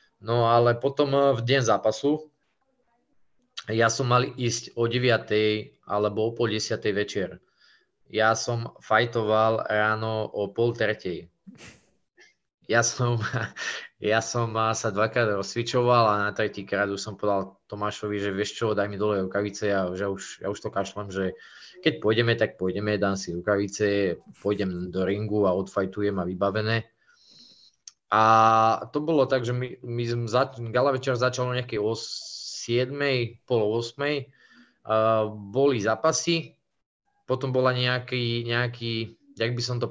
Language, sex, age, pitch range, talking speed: Slovak, male, 20-39, 105-130 Hz, 140 wpm